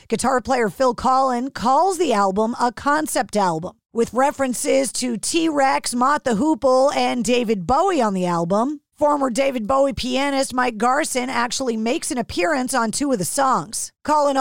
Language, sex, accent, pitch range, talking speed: English, female, American, 235-285 Hz, 160 wpm